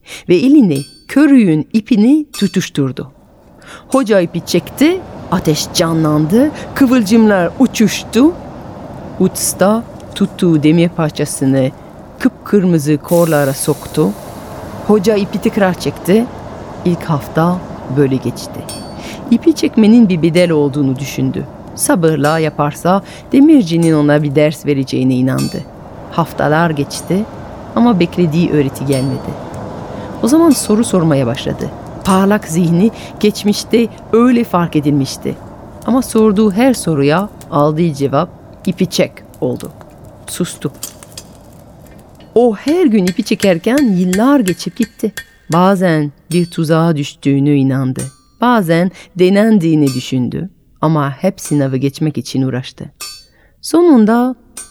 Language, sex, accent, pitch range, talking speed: Turkish, female, native, 145-220 Hz, 100 wpm